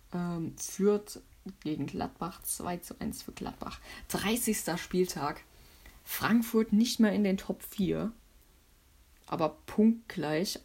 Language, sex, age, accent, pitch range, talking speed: German, female, 20-39, German, 165-205 Hz, 105 wpm